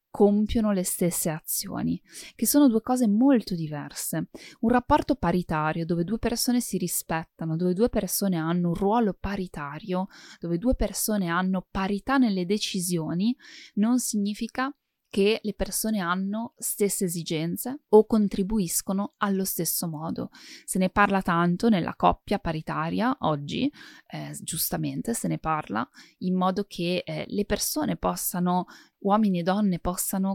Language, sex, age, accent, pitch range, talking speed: Italian, female, 20-39, native, 175-225 Hz, 135 wpm